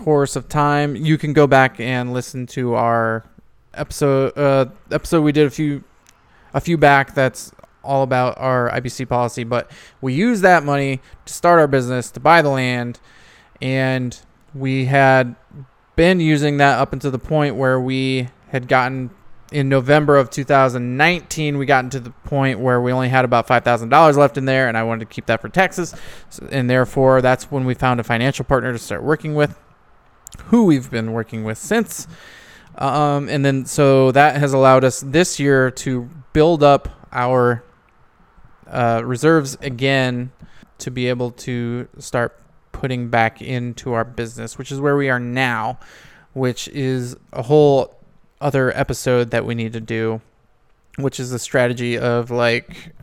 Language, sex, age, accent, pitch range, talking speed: English, male, 20-39, American, 125-145 Hz, 170 wpm